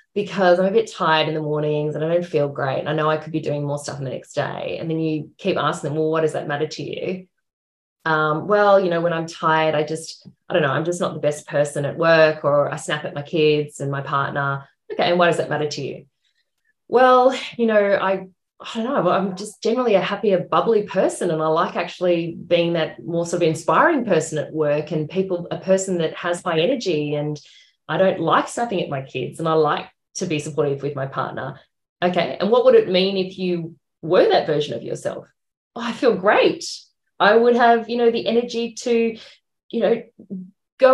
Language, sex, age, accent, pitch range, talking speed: English, female, 20-39, Australian, 155-225 Hz, 225 wpm